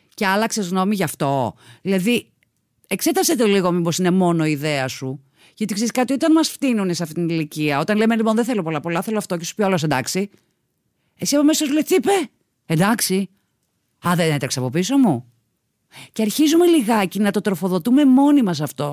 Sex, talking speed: female, 195 wpm